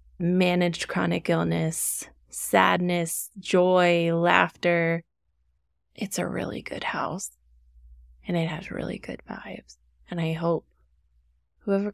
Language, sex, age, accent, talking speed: English, female, 20-39, American, 105 wpm